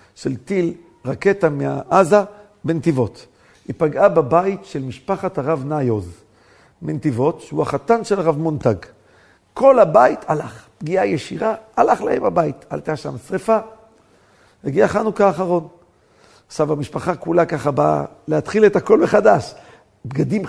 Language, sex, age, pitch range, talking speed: Hebrew, male, 50-69, 155-220 Hz, 125 wpm